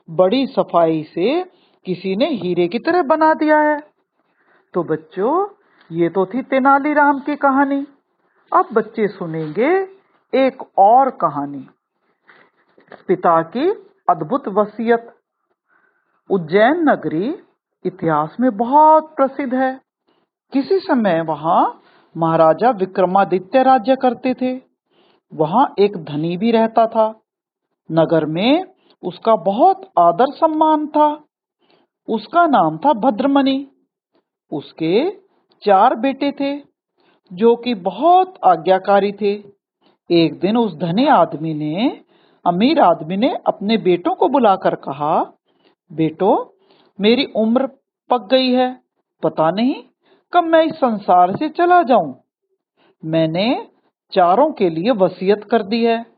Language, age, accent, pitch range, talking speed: Hindi, 50-69, native, 190-310 Hz, 115 wpm